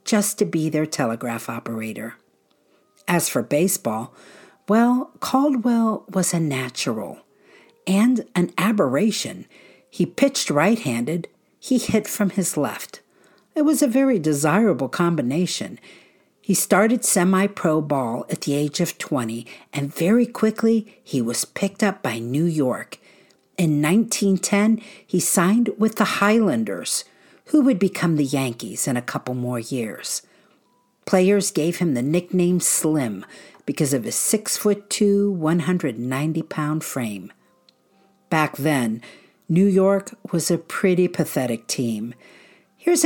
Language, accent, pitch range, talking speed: English, American, 150-220 Hz, 125 wpm